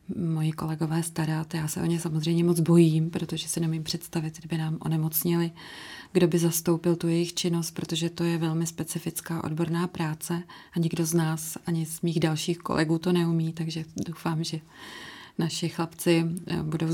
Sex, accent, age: female, native, 30-49